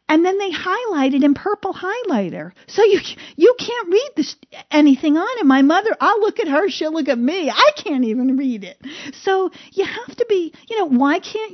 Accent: American